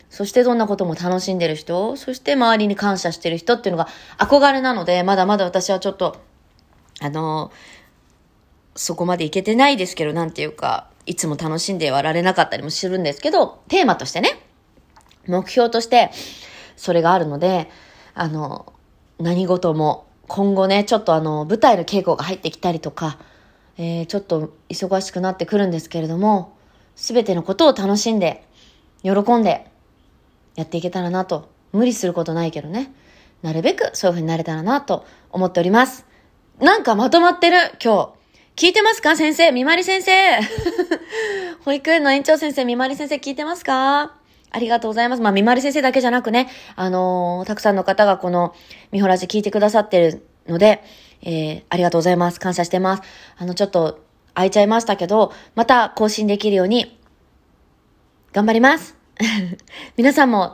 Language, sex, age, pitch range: Japanese, female, 20-39, 175-260 Hz